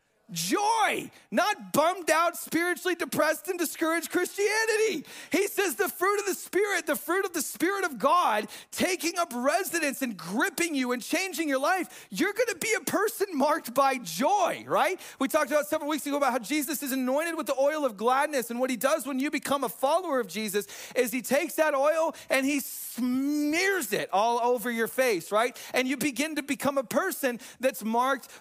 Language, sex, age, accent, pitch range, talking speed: English, male, 40-59, American, 255-315 Hz, 195 wpm